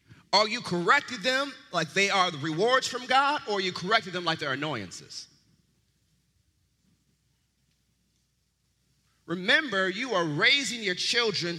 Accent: American